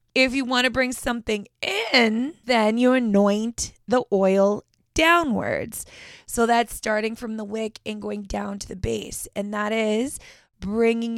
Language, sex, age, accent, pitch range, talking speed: English, female, 20-39, American, 200-240 Hz, 155 wpm